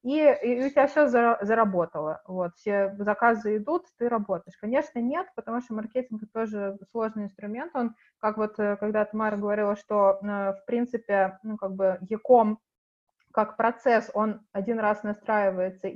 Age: 20-39